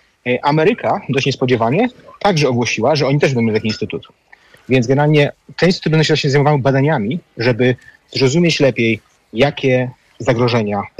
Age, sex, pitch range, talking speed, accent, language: 30-49, male, 125-150 Hz, 135 wpm, native, Polish